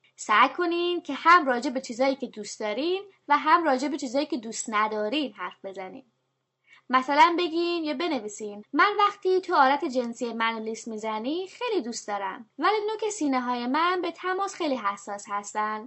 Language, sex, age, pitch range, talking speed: English, female, 20-39, 220-335 Hz, 165 wpm